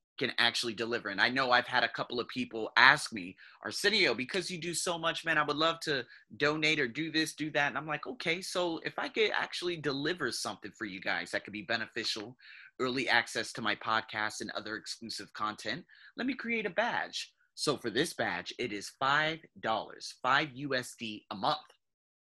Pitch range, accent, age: 115-165 Hz, American, 30-49